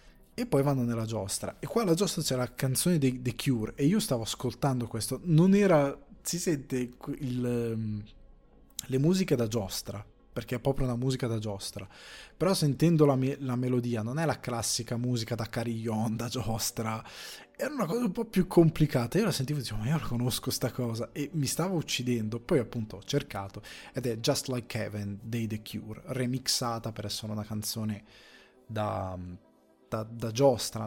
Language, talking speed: Italian, 180 wpm